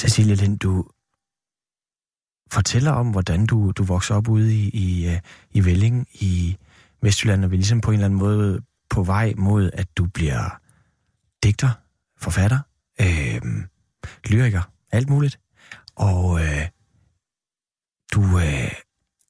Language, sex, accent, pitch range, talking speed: Danish, male, native, 95-115 Hz, 125 wpm